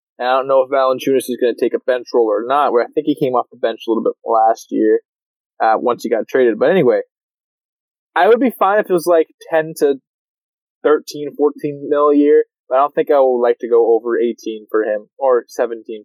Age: 20-39